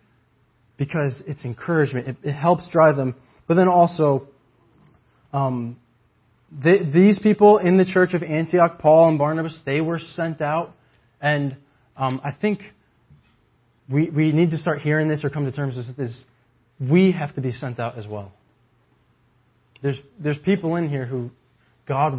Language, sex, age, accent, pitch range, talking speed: English, male, 20-39, American, 125-170 Hz, 160 wpm